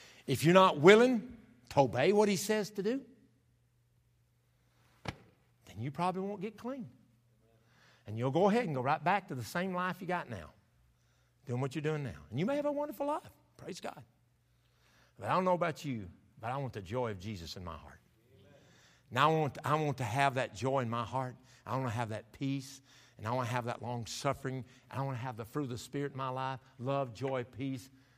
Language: English